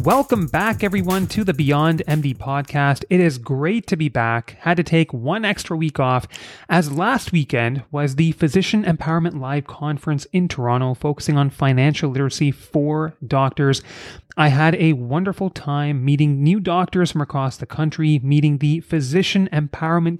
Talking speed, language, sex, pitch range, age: 160 wpm, English, male, 135-175 Hz, 30-49